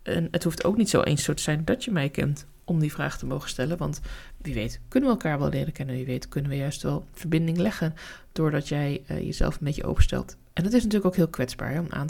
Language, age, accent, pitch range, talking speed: Dutch, 20-39, Dutch, 140-170 Hz, 250 wpm